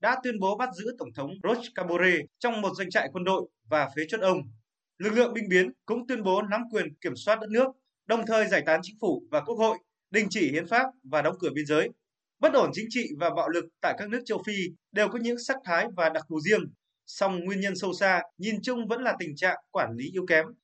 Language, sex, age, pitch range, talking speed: Vietnamese, male, 20-39, 170-230 Hz, 250 wpm